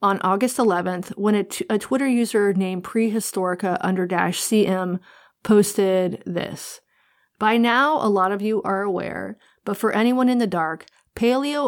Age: 30-49